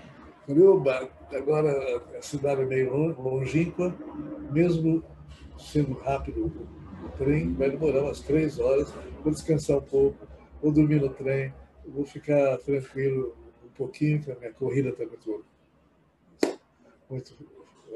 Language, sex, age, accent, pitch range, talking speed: Portuguese, male, 60-79, Brazilian, 125-165 Hz, 120 wpm